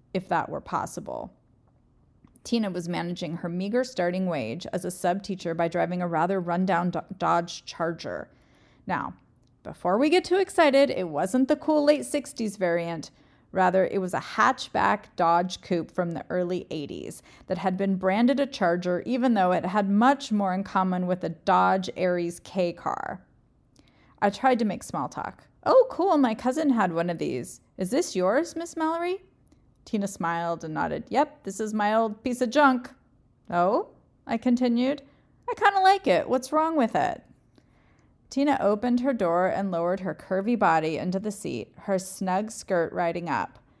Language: English